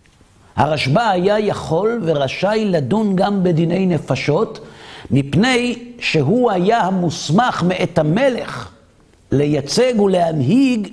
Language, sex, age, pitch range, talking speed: Hebrew, male, 50-69, 105-165 Hz, 90 wpm